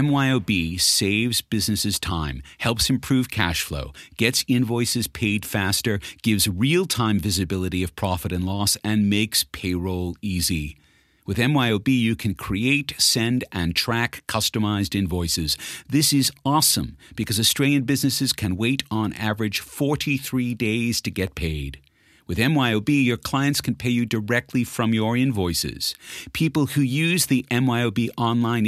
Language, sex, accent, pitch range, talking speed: English, male, American, 100-135 Hz, 135 wpm